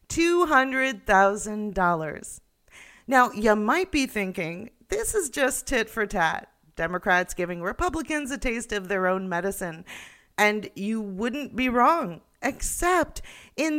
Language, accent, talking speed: English, American, 120 wpm